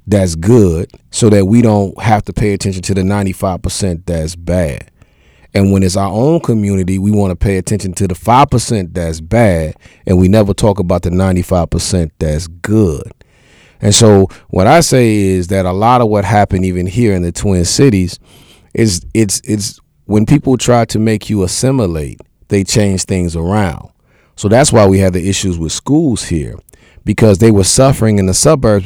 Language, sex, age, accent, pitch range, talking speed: English, male, 30-49, American, 90-110 Hz, 185 wpm